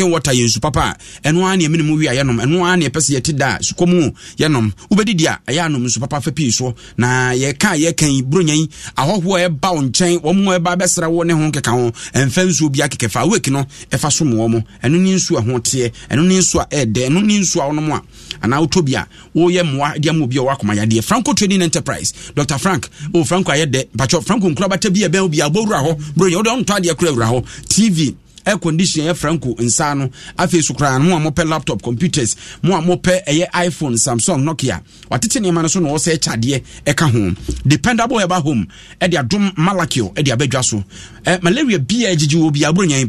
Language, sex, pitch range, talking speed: English, male, 130-180 Hz, 180 wpm